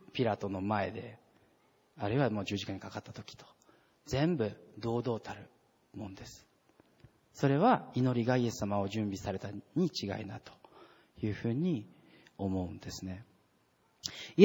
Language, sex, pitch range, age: Japanese, male, 105-145 Hz, 40-59